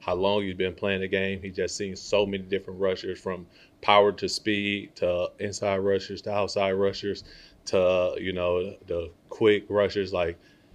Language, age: English, 30-49